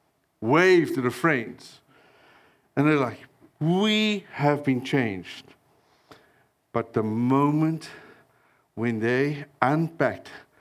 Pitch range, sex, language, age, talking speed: 115-155 Hz, male, English, 60-79, 95 wpm